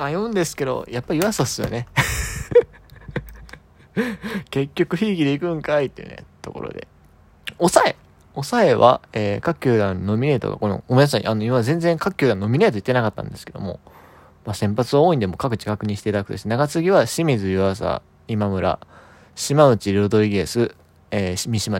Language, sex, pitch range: Japanese, male, 100-160 Hz